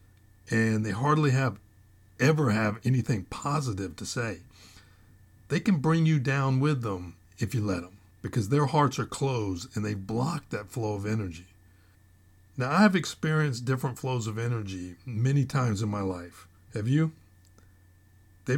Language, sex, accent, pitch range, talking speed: English, male, American, 95-125 Hz, 155 wpm